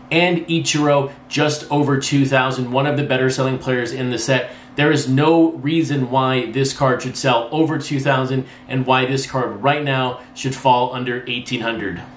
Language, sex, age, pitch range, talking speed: English, male, 30-49, 130-145 Hz, 175 wpm